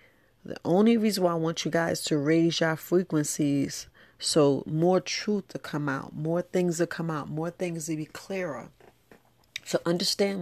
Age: 40-59